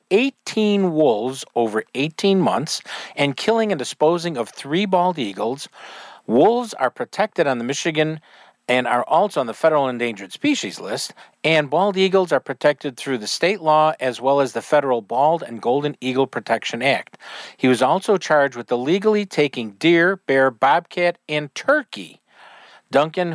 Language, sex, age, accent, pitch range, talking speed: English, male, 50-69, American, 130-175 Hz, 155 wpm